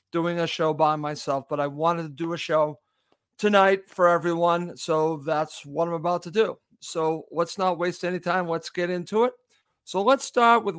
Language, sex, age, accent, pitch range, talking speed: English, male, 50-69, American, 155-185 Hz, 200 wpm